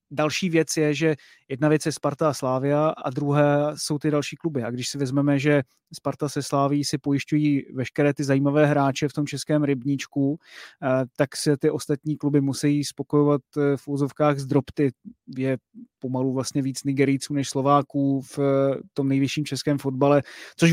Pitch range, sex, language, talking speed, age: 135-150 Hz, male, Czech, 170 wpm, 30-49